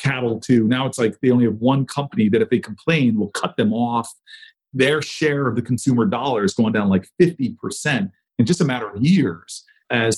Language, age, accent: English, 40-59, American